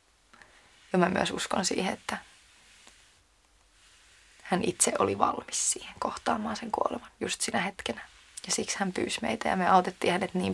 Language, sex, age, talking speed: Finnish, female, 20-39, 155 wpm